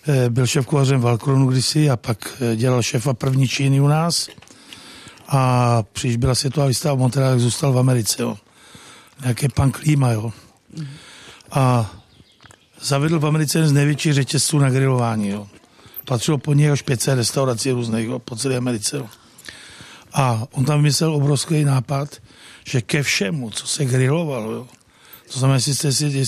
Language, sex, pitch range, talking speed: Czech, male, 125-150 Hz, 145 wpm